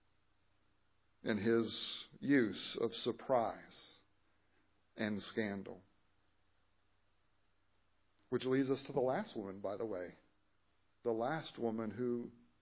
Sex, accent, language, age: male, American, English, 50-69